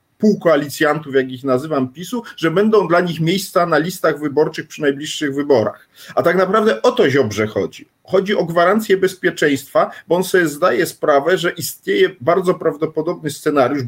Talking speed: 165 wpm